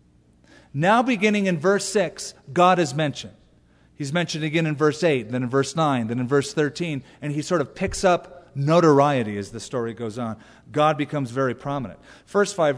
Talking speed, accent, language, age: 190 wpm, American, English, 40-59